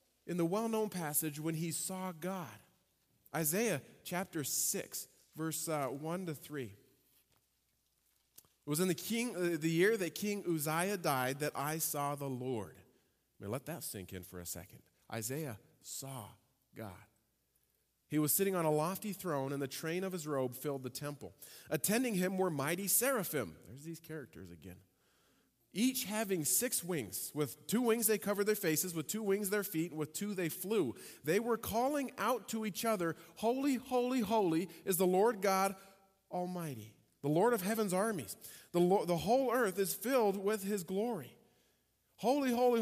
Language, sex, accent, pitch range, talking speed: English, male, American, 140-205 Hz, 165 wpm